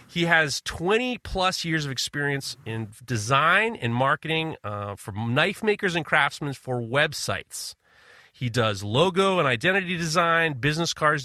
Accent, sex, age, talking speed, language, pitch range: American, male, 40-59, 140 wpm, English, 130-170 Hz